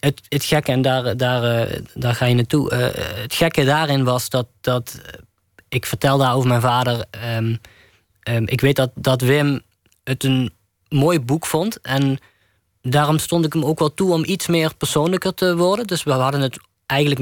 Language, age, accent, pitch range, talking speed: Dutch, 20-39, Dutch, 110-140 Hz, 145 wpm